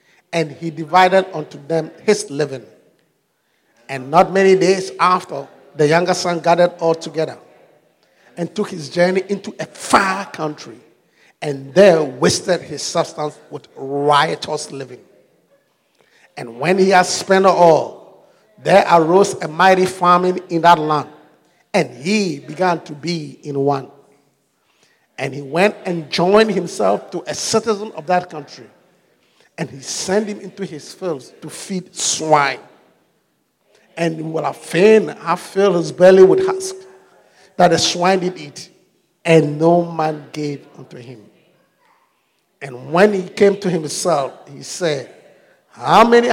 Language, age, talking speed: English, 50-69, 140 wpm